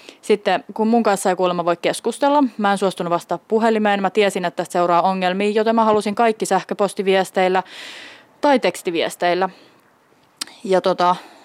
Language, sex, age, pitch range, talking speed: Finnish, female, 20-39, 180-220 Hz, 145 wpm